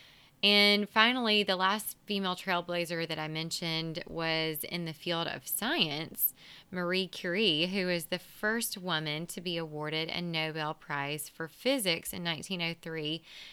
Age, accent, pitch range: 20-39, American, 165-215 Hz